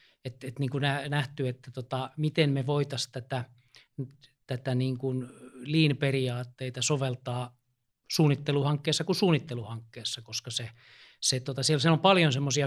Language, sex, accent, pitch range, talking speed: Finnish, male, native, 125-150 Hz, 130 wpm